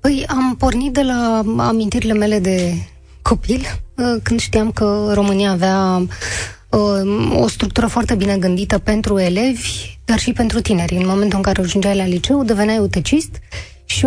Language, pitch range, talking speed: Romanian, 185-245 Hz, 150 wpm